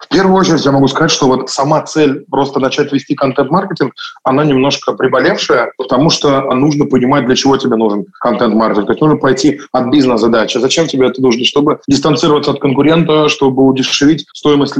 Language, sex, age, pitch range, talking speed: Russian, male, 20-39, 130-145 Hz, 175 wpm